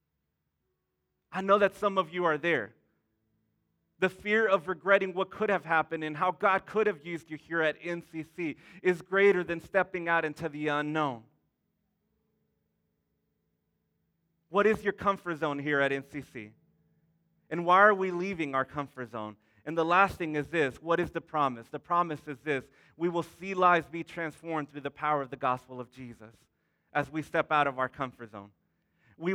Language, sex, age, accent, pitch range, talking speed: English, male, 30-49, American, 140-180 Hz, 180 wpm